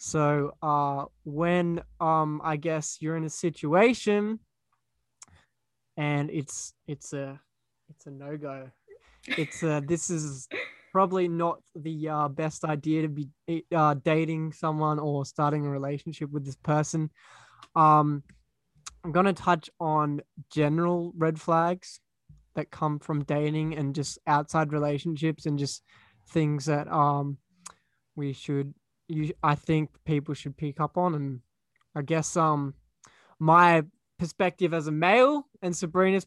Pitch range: 145-170 Hz